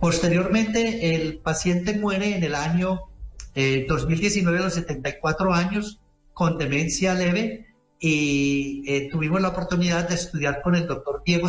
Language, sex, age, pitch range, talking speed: Spanish, male, 50-69, 155-195 Hz, 140 wpm